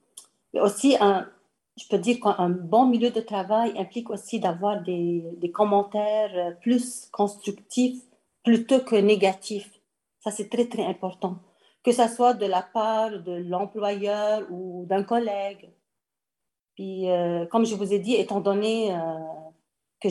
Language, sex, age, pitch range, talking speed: French, female, 40-59, 180-220 Hz, 145 wpm